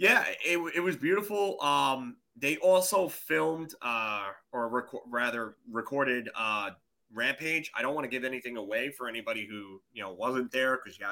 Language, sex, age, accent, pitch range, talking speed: English, male, 30-49, American, 110-140 Hz, 175 wpm